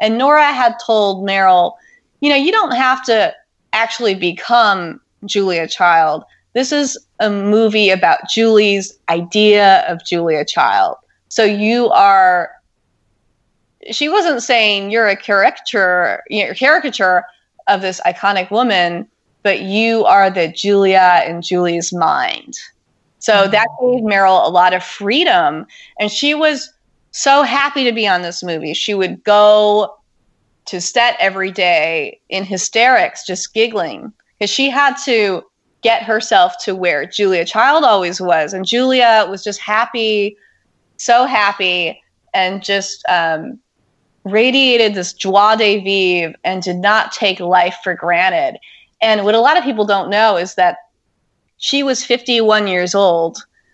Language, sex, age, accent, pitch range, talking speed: English, female, 20-39, American, 185-245 Hz, 140 wpm